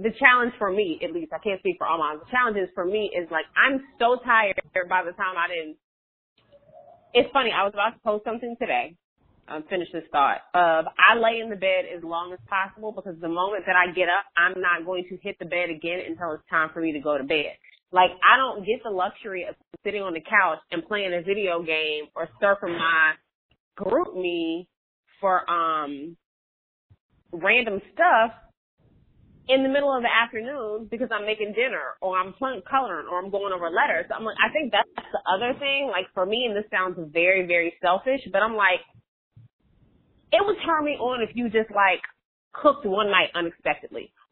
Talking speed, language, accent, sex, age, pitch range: 205 wpm, English, American, female, 30-49, 170-225 Hz